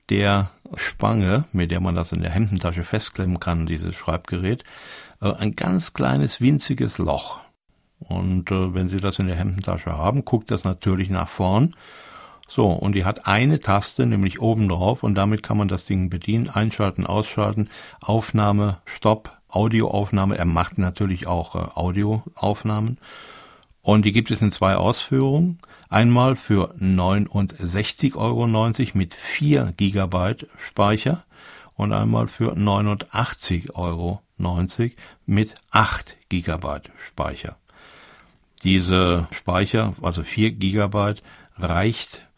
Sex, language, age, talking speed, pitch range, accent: male, German, 60-79, 125 wpm, 90-110 Hz, German